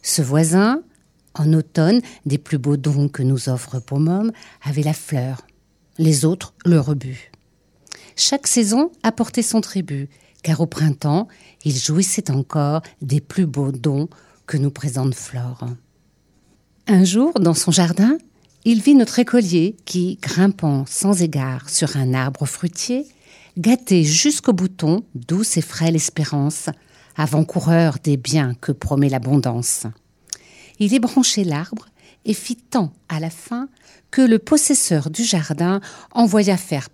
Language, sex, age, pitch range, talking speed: French, female, 50-69, 145-205 Hz, 135 wpm